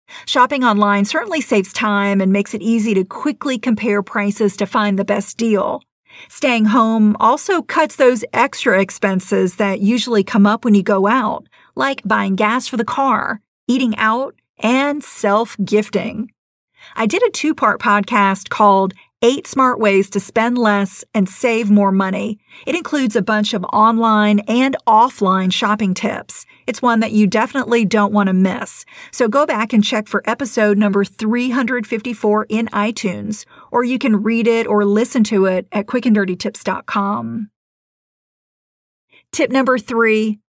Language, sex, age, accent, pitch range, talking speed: English, female, 50-69, American, 200-245 Hz, 155 wpm